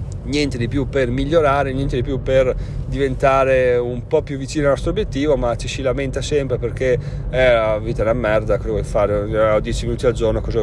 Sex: male